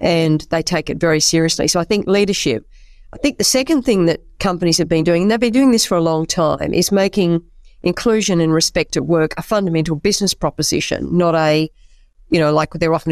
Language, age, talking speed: English, 50-69, 215 wpm